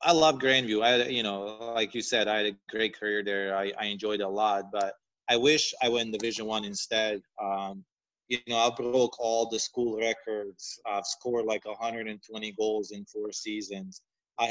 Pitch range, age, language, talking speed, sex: 110-125 Hz, 20-39, English, 195 wpm, male